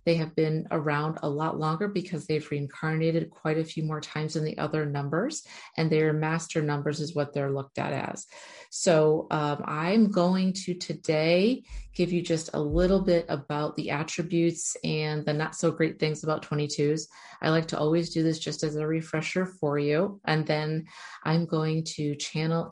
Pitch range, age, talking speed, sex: 150-170 Hz, 30-49, 185 wpm, female